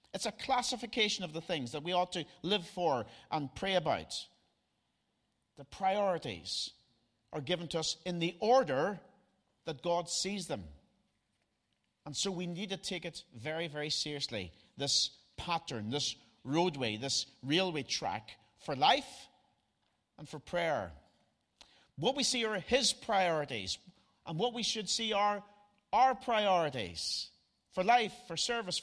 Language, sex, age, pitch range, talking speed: English, male, 50-69, 135-205 Hz, 140 wpm